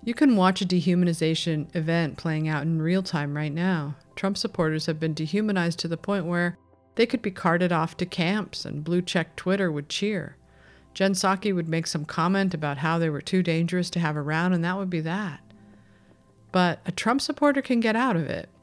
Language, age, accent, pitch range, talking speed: English, 50-69, American, 155-195 Hz, 205 wpm